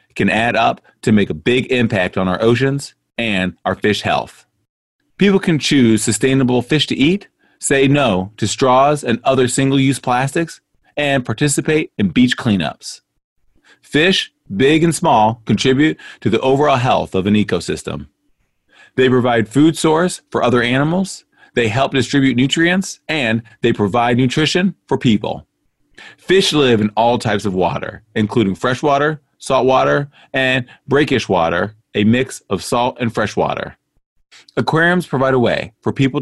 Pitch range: 115-145 Hz